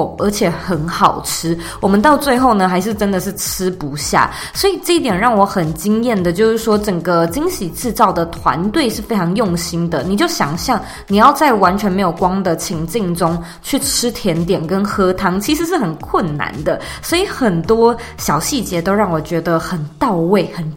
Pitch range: 175-230 Hz